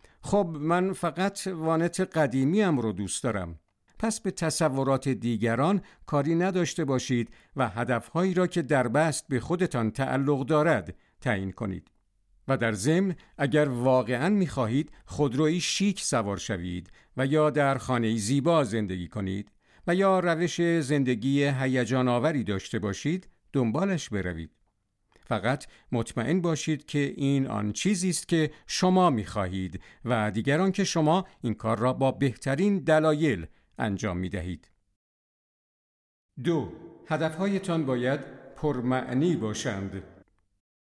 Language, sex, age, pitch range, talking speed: Persian, male, 50-69, 110-165 Hz, 120 wpm